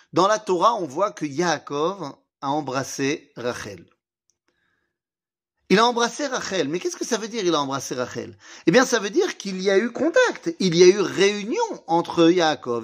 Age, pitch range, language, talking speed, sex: 40-59, 160-230 Hz, French, 190 wpm, male